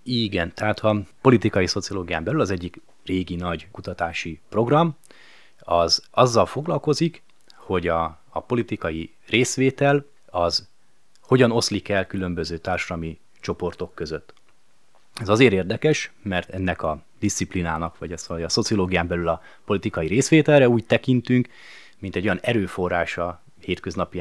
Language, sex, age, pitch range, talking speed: Hungarian, male, 30-49, 85-115 Hz, 125 wpm